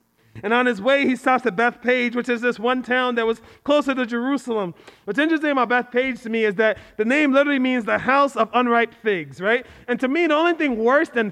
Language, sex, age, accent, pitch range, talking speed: English, male, 40-59, American, 230-280 Hz, 235 wpm